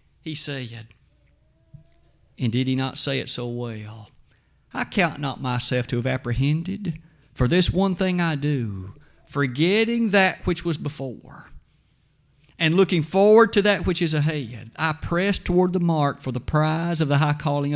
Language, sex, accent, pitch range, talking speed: English, male, American, 140-205 Hz, 160 wpm